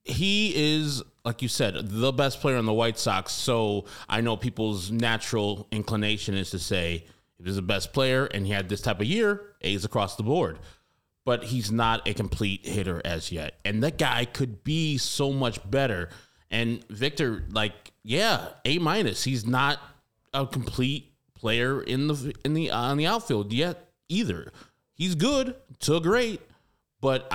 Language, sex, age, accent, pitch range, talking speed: English, male, 20-39, American, 105-135 Hz, 175 wpm